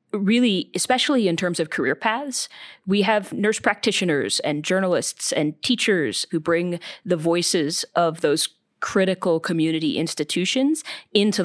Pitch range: 160-205 Hz